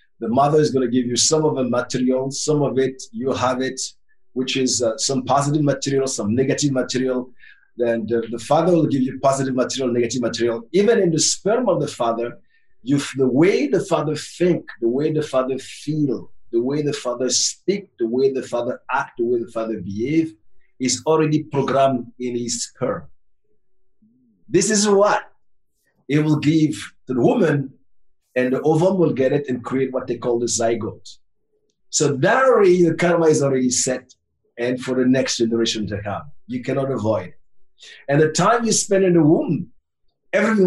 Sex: male